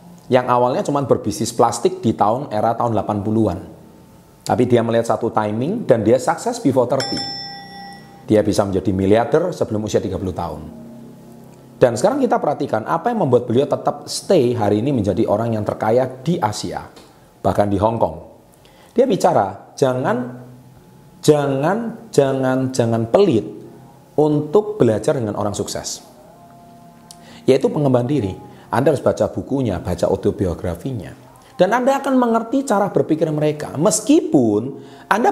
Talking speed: 135 wpm